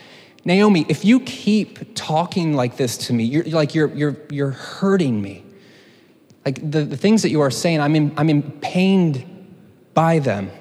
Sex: male